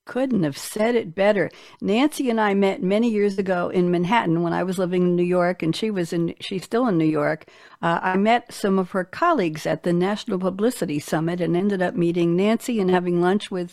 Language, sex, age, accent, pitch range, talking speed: English, female, 60-79, American, 175-225 Hz, 225 wpm